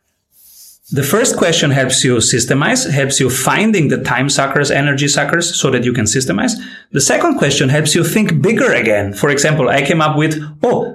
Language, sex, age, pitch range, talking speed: English, male, 30-49, 125-165 Hz, 185 wpm